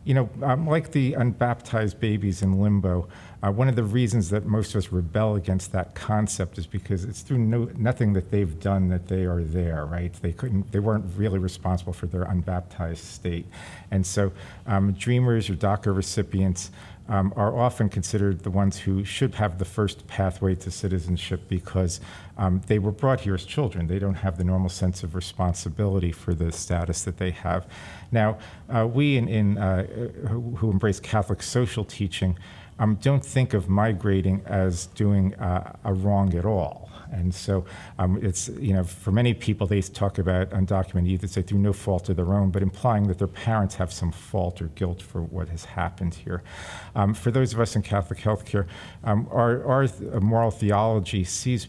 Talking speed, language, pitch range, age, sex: 190 wpm, English, 90-110 Hz, 50-69, male